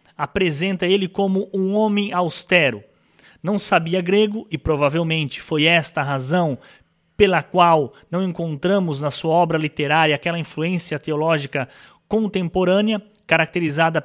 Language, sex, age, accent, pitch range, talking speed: Portuguese, male, 20-39, Brazilian, 150-195 Hz, 120 wpm